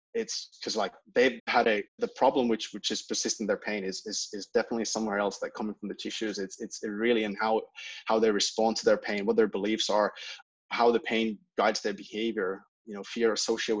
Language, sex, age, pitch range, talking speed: English, male, 20-39, 105-120 Hz, 215 wpm